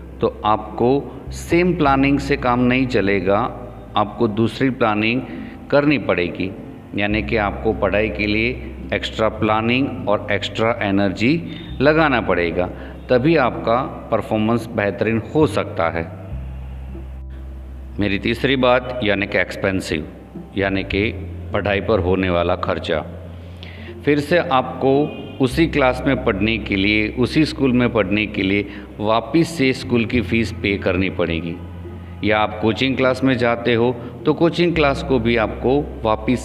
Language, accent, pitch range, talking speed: Hindi, native, 95-120 Hz, 135 wpm